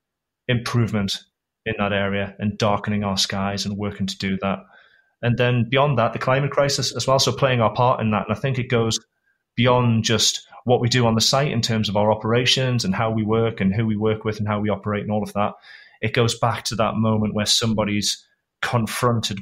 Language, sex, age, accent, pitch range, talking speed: English, male, 30-49, British, 100-115 Hz, 225 wpm